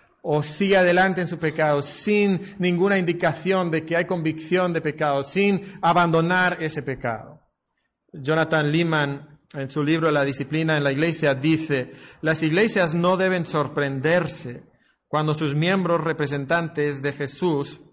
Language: Spanish